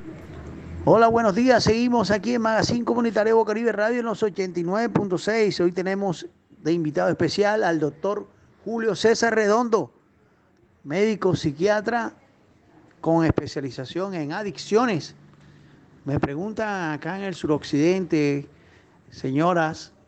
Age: 40-59